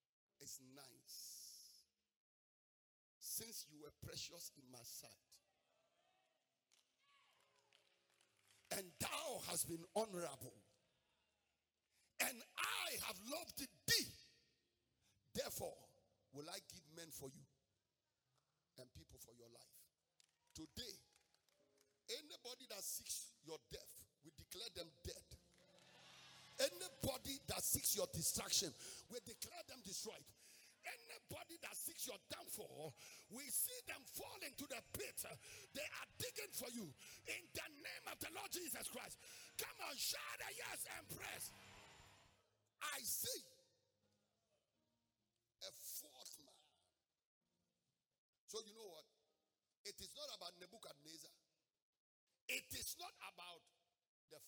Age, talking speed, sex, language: 50-69, 110 wpm, male, English